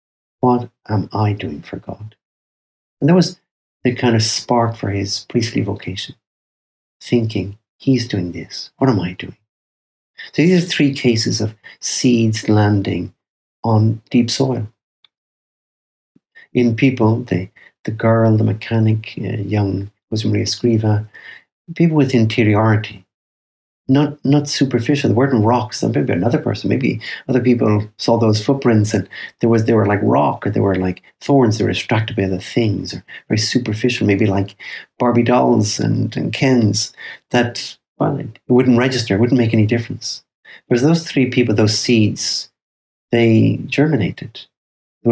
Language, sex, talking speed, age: English, male, 150 wpm, 50-69